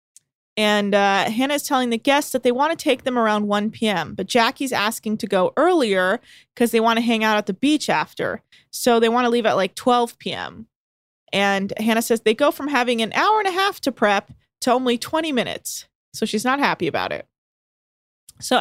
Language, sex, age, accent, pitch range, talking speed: English, female, 20-39, American, 205-260 Hz, 215 wpm